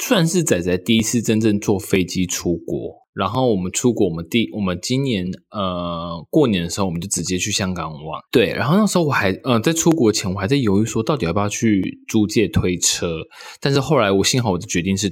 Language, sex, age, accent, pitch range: Chinese, male, 20-39, native, 95-125 Hz